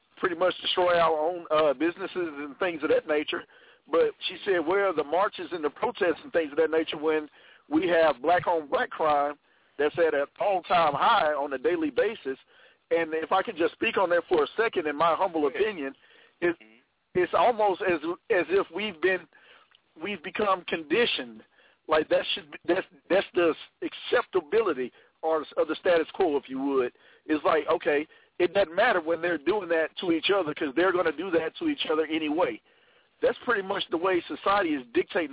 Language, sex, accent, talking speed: English, male, American, 195 wpm